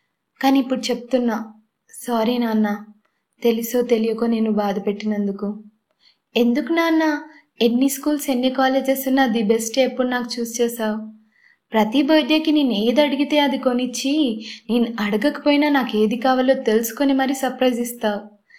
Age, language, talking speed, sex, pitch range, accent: 20-39, Telugu, 125 wpm, female, 225-270 Hz, native